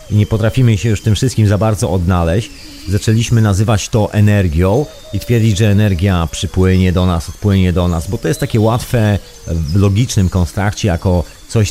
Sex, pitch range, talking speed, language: male, 95-120 Hz, 175 wpm, Polish